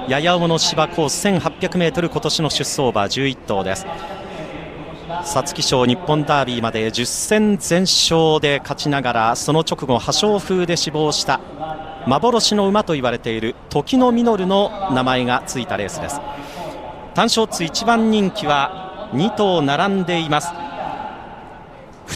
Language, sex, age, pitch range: Japanese, male, 40-59, 140-210 Hz